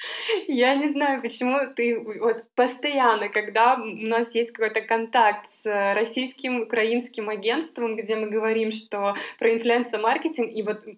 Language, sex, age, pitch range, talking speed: Russian, female, 20-39, 195-230 Hz, 140 wpm